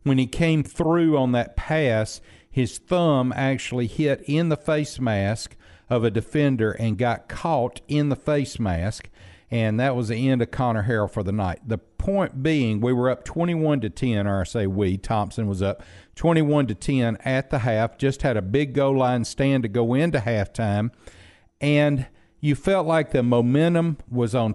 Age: 50-69